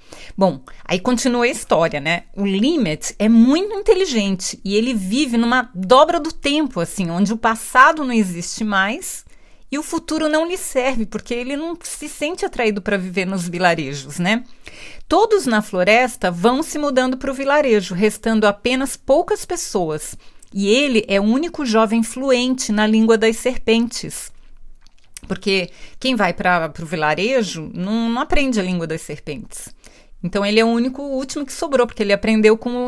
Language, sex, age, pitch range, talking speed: Portuguese, female, 40-59, 190-250 Hz, 170 wpm